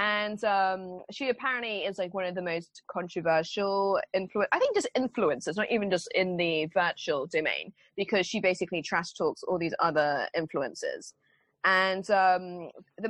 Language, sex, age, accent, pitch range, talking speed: English, female, 20-39, British, 180-250 Hz, 155 wpm